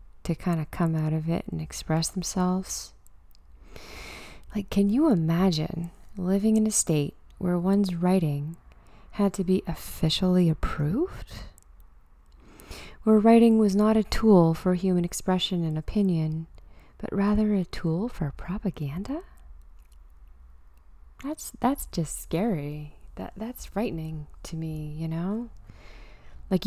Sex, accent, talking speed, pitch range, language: female, American, 125 wpm, 145-185 Hz, English